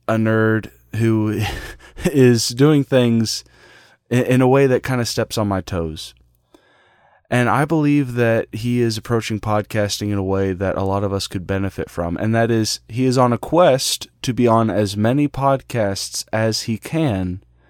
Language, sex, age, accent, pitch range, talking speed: English, male, 20-39, American, 100-130 Hz, 175 wpm